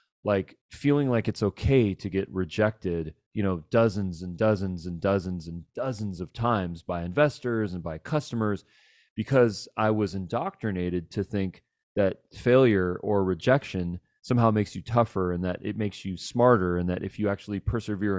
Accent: American